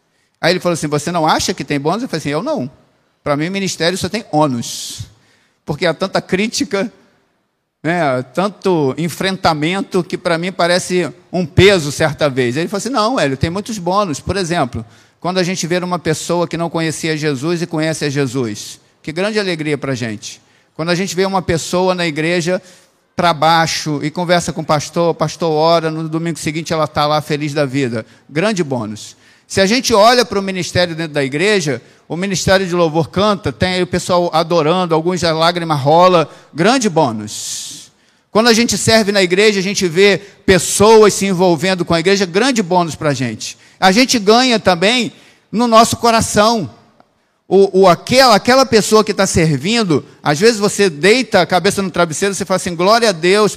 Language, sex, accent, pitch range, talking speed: Portuguese, male, Brazilian, 155-195 Hz, 190 wpm